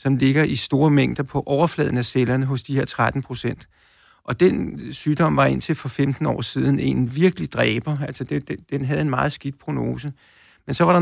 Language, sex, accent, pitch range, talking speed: Danish, male, native, 135-155 Hz, 195 wpm